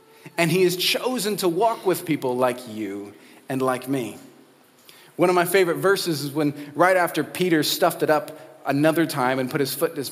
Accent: American